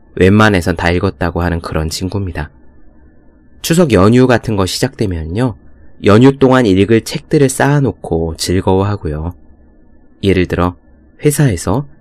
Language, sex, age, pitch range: Korean, male, 20-39, 80-125 Hz